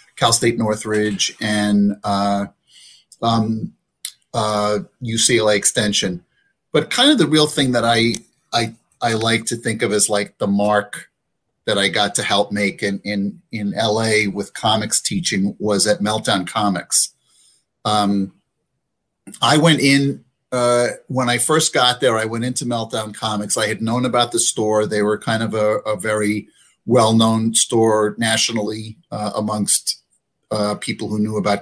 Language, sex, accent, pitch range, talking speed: English, male, American, 105-130 Hz, 155 wpm